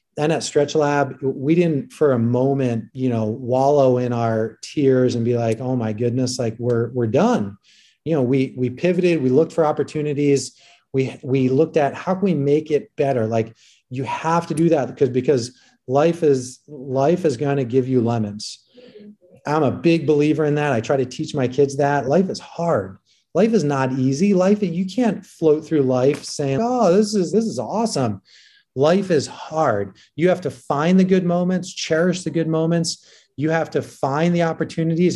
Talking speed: 195 wpm